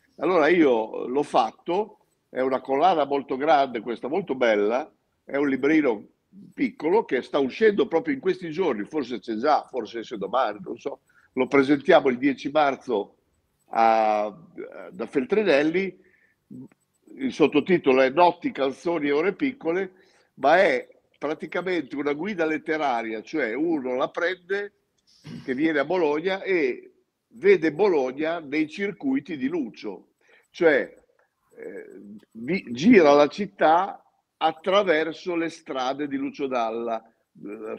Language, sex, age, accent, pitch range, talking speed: Italian, male, 50-69, native, 130-200 Hz, 125 wpm